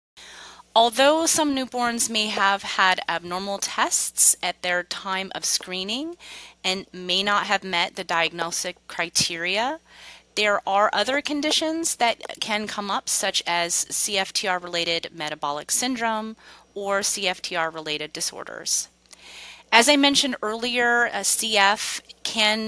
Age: 30-49